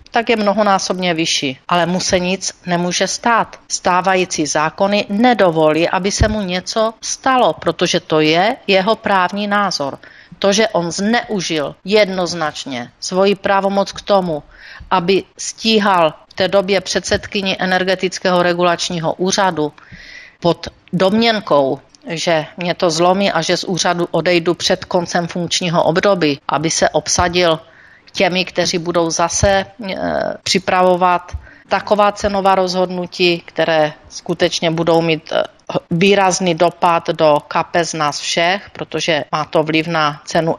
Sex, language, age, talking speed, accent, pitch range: female, Czech, 40-59, 125 wpm, native, 165-200 Hz